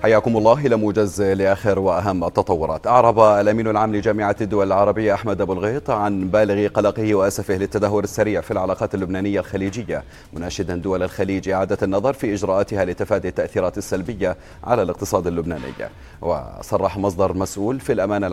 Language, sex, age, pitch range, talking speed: Arabic, male, 30-49, 95-105 Hz, 140 wpm